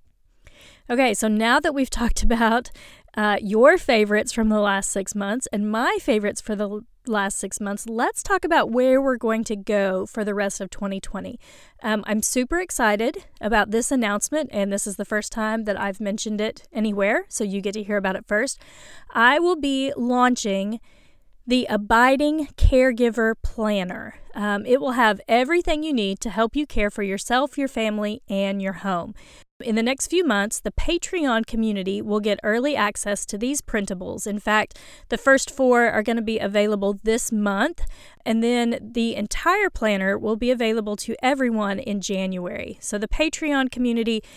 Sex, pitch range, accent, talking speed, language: female, 210-255 Hz, American, 175 wpm, English